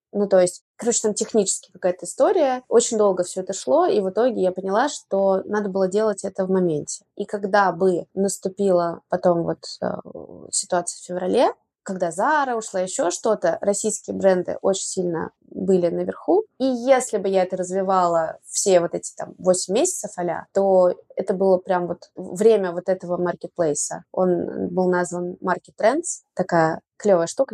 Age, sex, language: 20-39, female, Russian